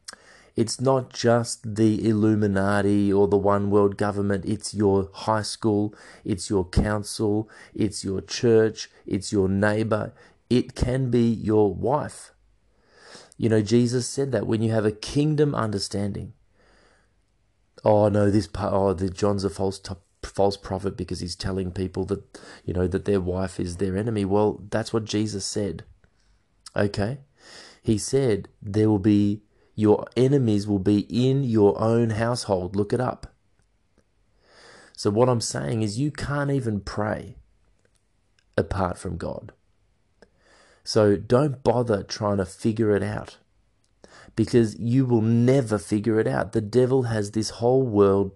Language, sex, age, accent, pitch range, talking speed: English, male, 30-49, Australian, 100-120 Hz, 145 wpm